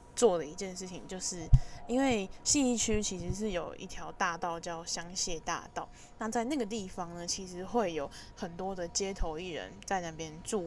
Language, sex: Chinese, female